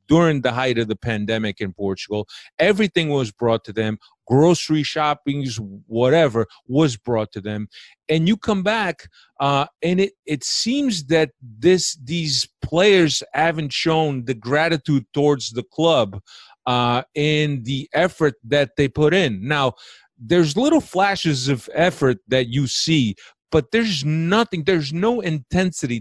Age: 30-49